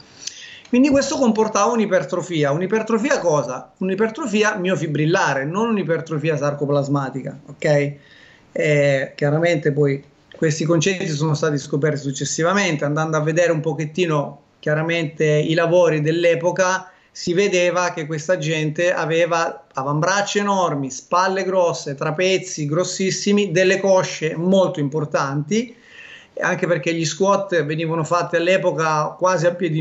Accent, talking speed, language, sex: native, 115 wpm, Italian, male